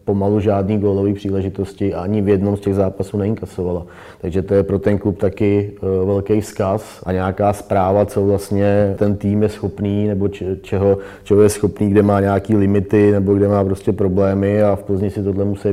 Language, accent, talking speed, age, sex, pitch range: Czech, native, 190 wpm, 30-49, male, 100-105 Hz